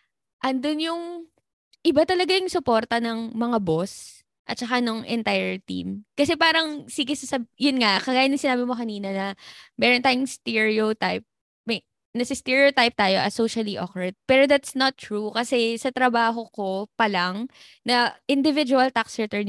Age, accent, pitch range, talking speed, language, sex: 20-39, native, 200-260 Hz, 155 wpm, Filipino, female